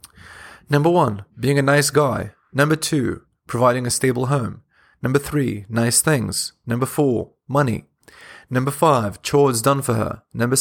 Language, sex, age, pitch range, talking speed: English, male, 30-49, 115-145 Hz, 145 wpm